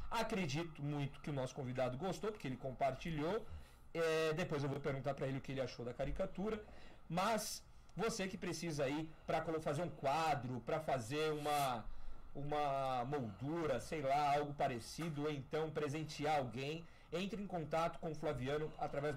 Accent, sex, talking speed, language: Brazilian, male, 160 wpm, Portuguese